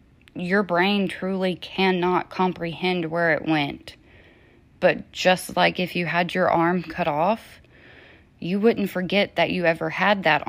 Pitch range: 170-205 Hz